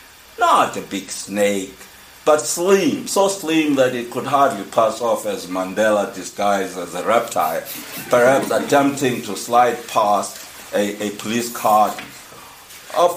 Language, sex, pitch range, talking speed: English, male, 105-145 Hz, 135 wpm